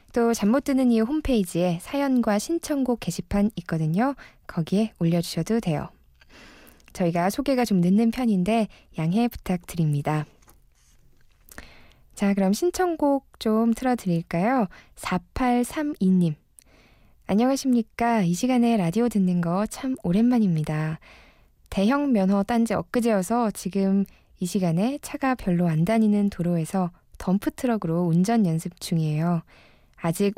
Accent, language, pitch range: native, Korean, 175-235 Hz